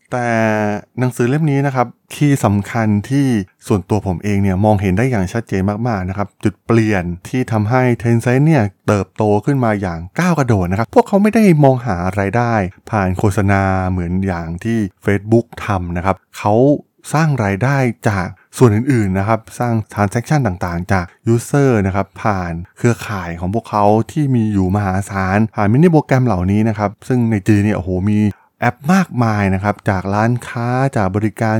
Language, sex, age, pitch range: Thai, male, 20-39, 95-125 Hz